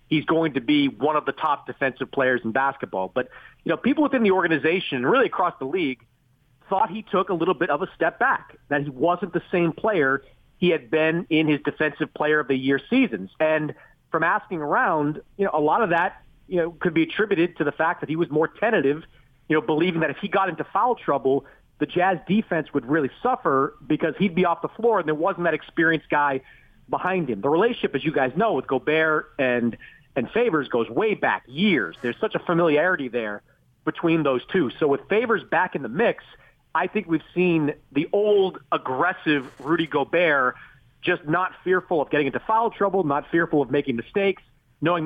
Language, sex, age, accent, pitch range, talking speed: English, male, 40-59, American, 135-175 Hz, 210 wpm